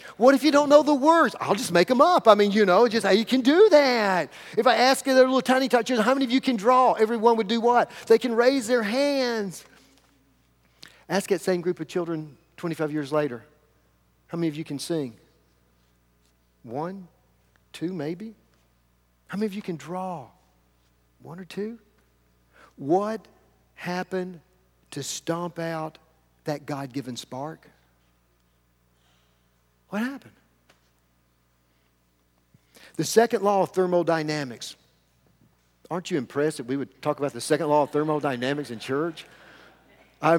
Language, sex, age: English, male, 50-69